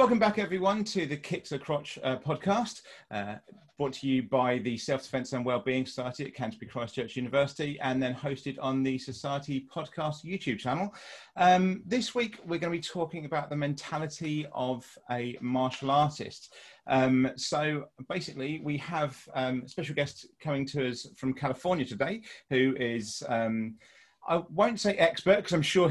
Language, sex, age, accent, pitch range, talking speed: English, male, 30-49, British, 130-165 Hz, 170 wpm